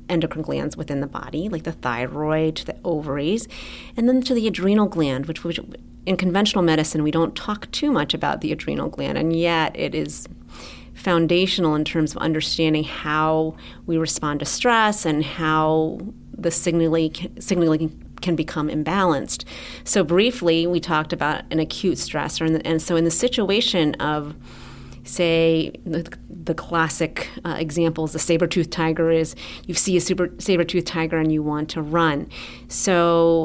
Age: 30-49